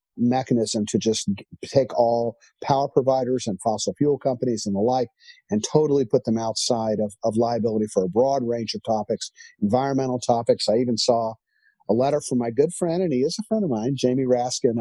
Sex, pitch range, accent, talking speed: male, 115-150 Hz, American, 195 wpm